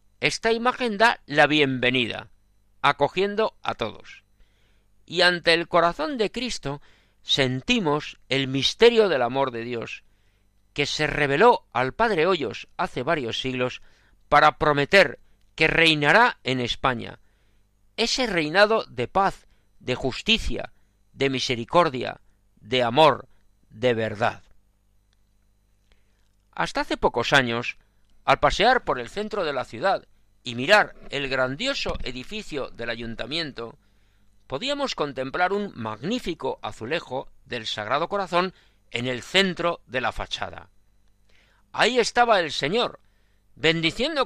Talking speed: 115 wpm